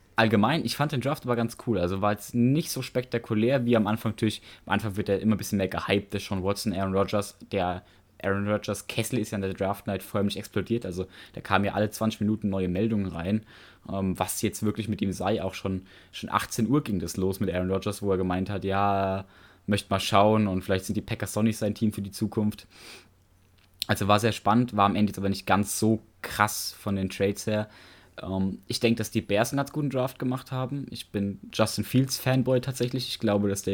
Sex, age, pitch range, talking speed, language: male, 20-39, 100-115 Hz, 230 wpm, German